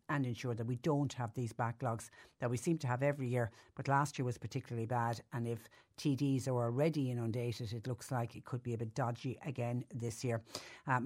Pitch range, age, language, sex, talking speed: 125-150 Hz, 60-79, English, female, 215 wpm